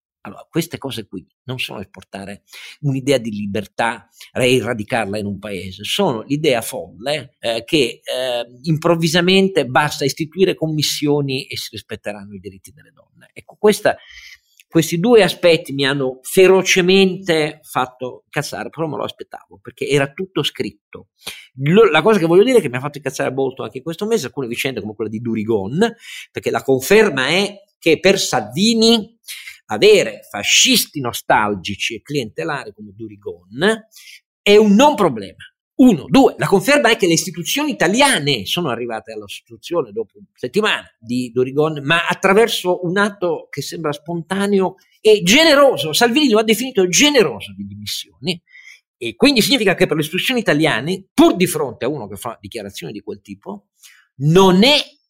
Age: 50-69